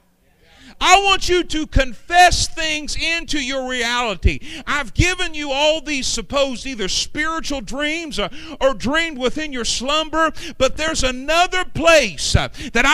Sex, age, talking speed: male, 50-69, 135 wpm